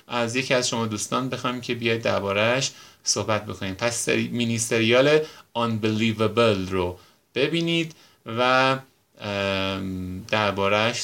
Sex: male